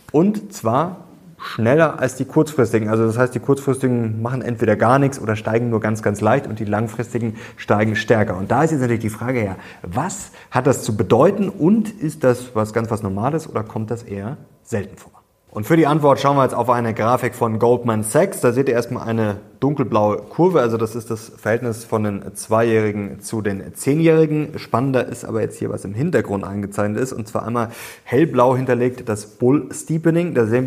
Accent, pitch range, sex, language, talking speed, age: German, 110-140 Hz, male, German, 200 wpm, 30-49